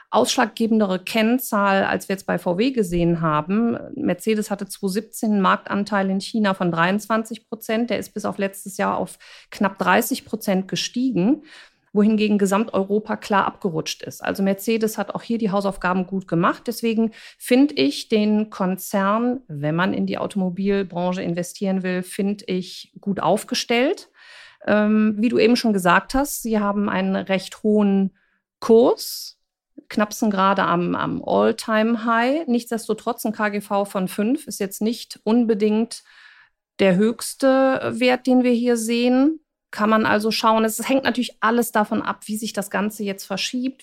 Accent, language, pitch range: German, German, 185-230 Hz